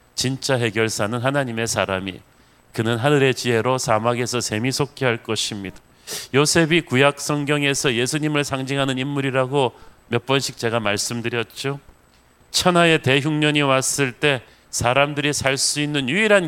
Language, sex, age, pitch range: Korean, male, 40-59, 115-150 Hz